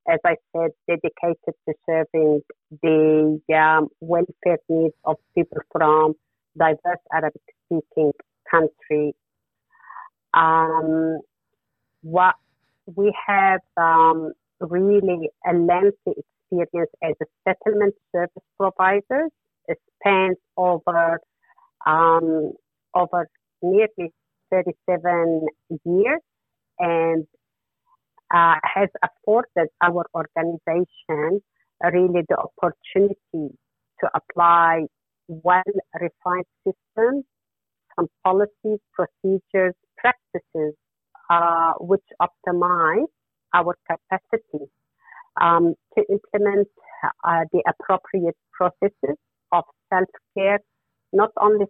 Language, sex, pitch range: English, female, 165-195 Hz